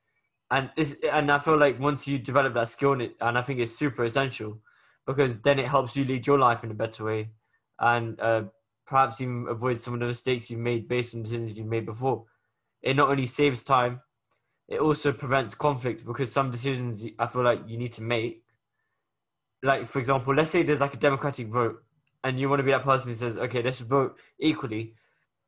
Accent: British